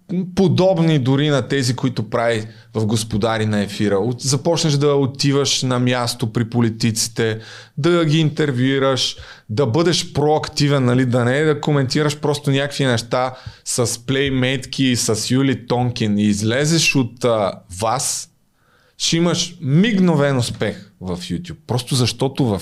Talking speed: 135 wpm